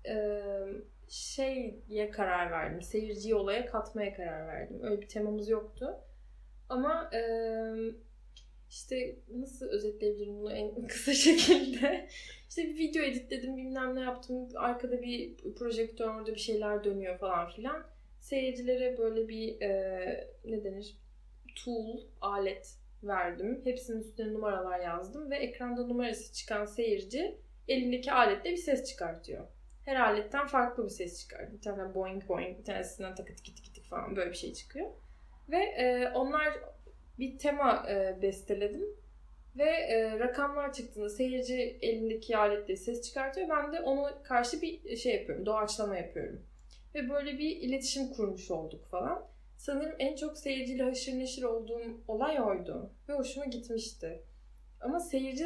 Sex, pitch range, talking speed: female, 205-265 Hz, 140 wpm